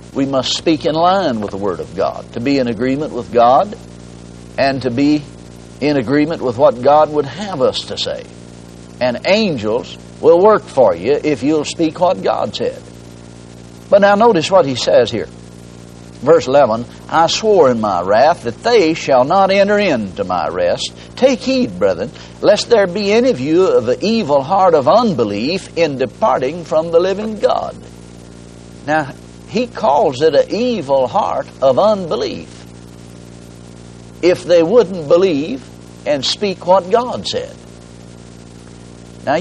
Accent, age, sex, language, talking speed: American, 60-79, male, English, 155 wpm